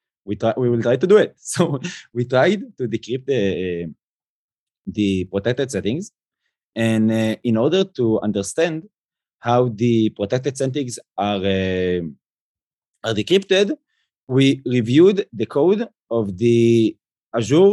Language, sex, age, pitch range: English, male, 30-49, 110-175 Hz